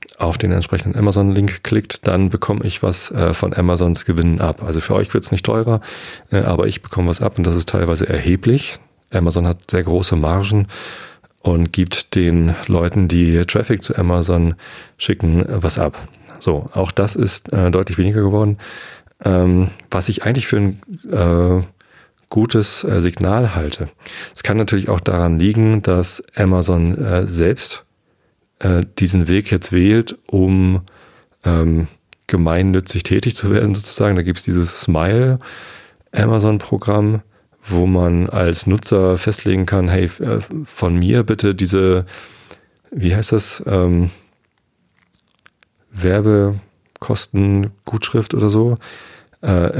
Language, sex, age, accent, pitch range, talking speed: German, male, 30-49, German, 85-105 Hz, 140 wpm